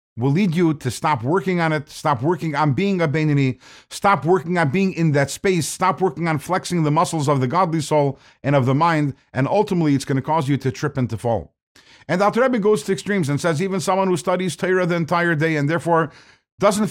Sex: male